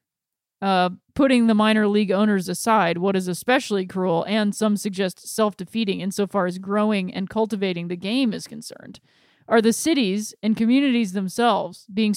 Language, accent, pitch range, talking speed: English, American, 195-235 Hz, 155 wpm